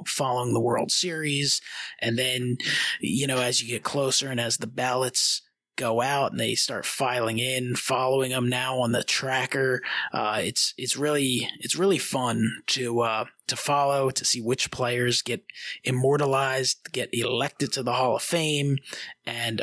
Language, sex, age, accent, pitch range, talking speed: English, male, 30-49, American, 120-135 Hz, 165 wpm